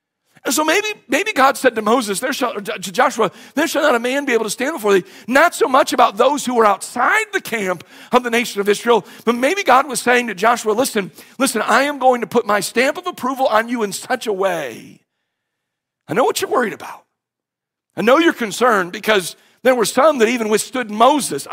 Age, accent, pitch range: 50-69, American, 170-250 Hz